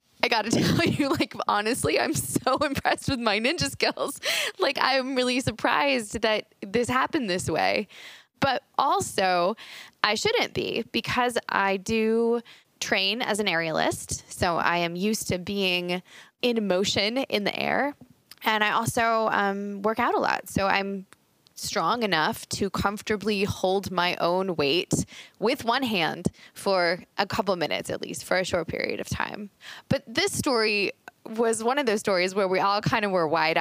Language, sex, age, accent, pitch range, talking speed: English, female, 20-39, American, 165-230 Hz, 170 wpm